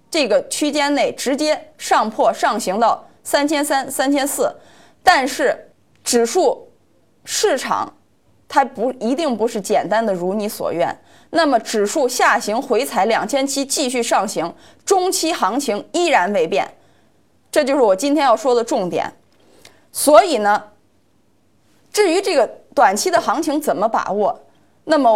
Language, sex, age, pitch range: Chinese, female, 20-39, 210-320 Hz